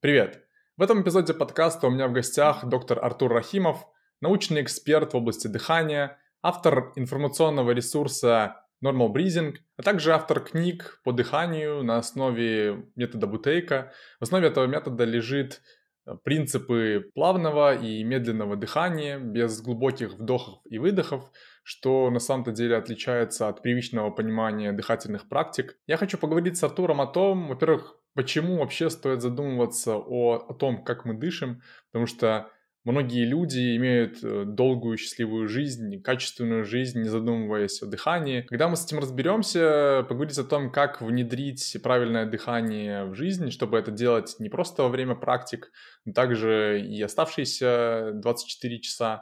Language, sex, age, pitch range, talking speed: Russian, male, 20-39, 115-150 Hz, 145 wpm